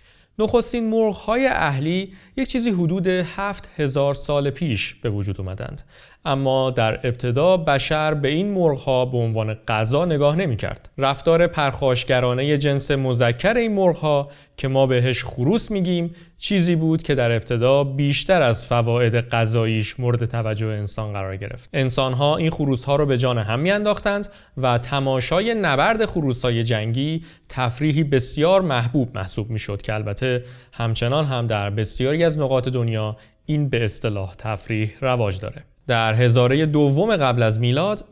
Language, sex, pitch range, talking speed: Persian, male, 115-160 Hz, 150 wpm